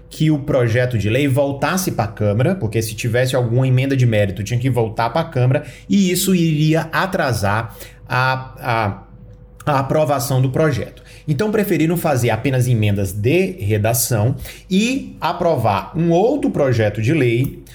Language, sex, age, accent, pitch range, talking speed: Portuguese, male, 30-49, Brazilian, 120-155 Hz, 155 wpm